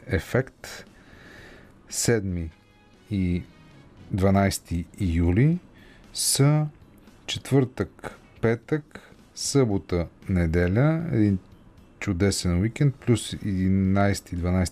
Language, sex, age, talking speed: Bulgarian, male, 30-49, 55 wpm